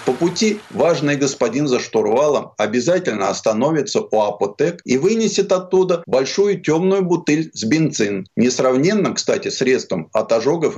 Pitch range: 125-180 Hz